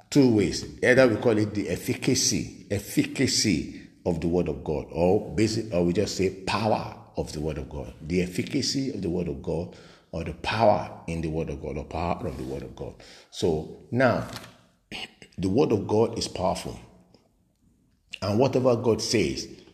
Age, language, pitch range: 50-69, English, 90-120 Hz